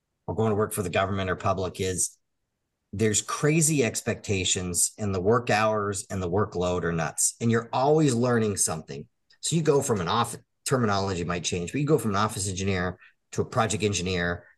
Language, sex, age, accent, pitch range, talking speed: English, male, 40-59, American, 95-125 Hz, 195 wpm